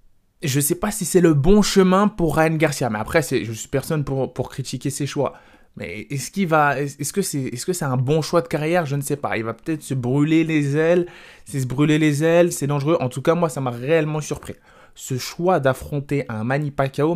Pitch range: 125-165 Hz